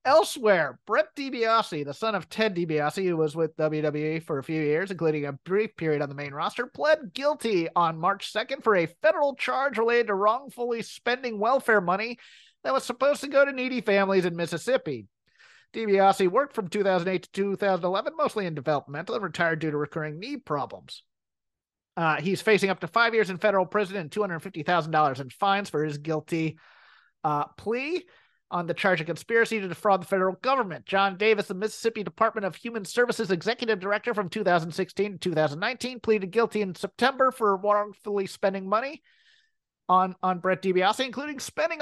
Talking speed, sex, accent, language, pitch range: 175 wpm, male, American, English, 175-235 Hz